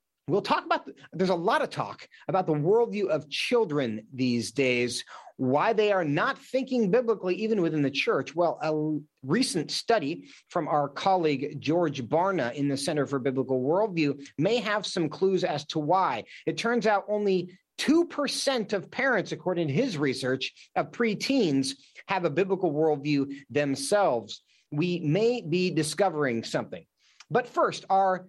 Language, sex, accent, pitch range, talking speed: English, male, American, 145-210 Hz, 155 wpm